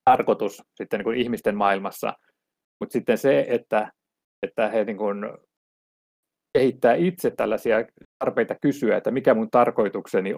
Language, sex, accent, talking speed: Finnish, male, native, 135 wpm